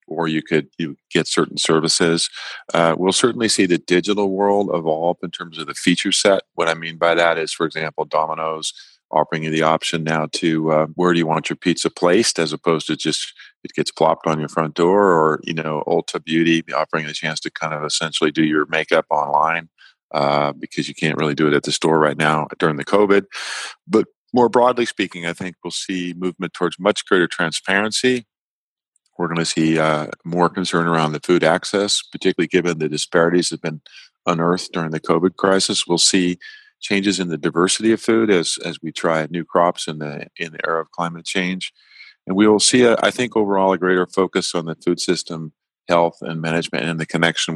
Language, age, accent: English, 40-59, American